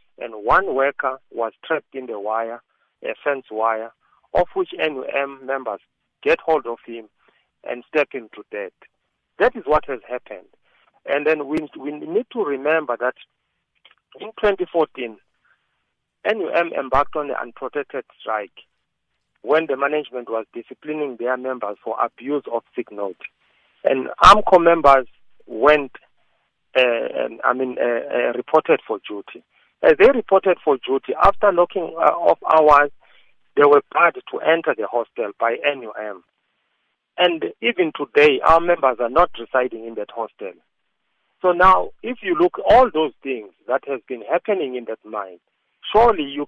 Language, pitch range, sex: English, 125-175 Hz, male